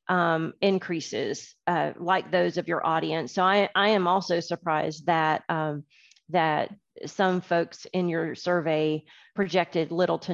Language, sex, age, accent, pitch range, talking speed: English, female, 40-59, American, 165-195 Hz, 145 wpm